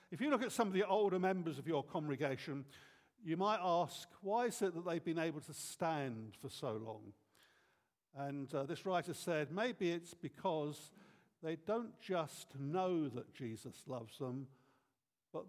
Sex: male